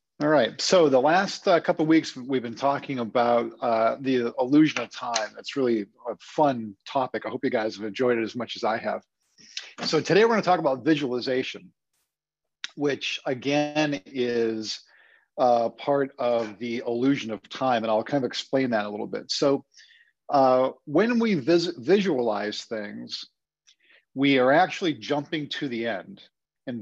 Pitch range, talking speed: 115-145 Hz, 170 wpm